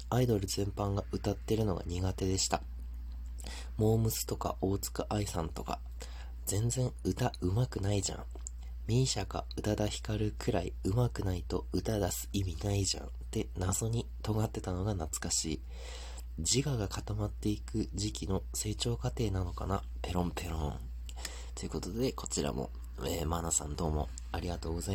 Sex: male